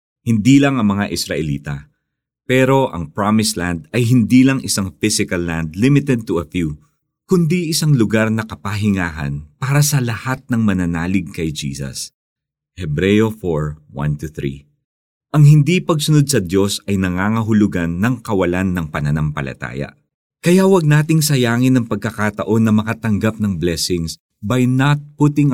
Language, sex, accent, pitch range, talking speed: Filipino, male, native, 85-125 Hz, 135 wpm